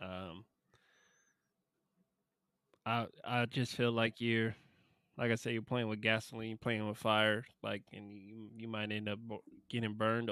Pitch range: 110-140 Hz